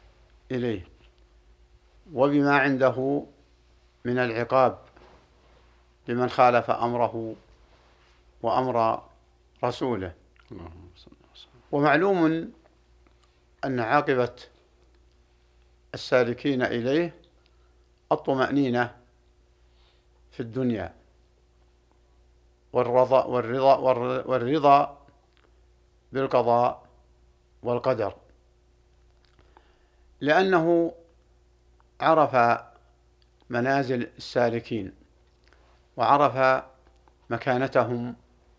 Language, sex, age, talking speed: Arabic, male, 60-79, 45 wpm